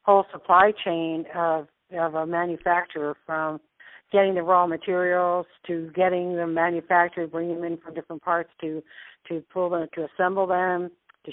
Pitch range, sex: 165-200 Hz, female